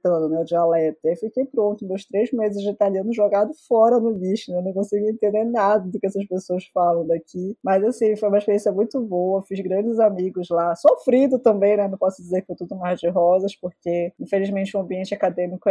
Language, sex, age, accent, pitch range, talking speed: Portuguese, female, 20-39, Brazilian, 180-210 Hz, 210 wpm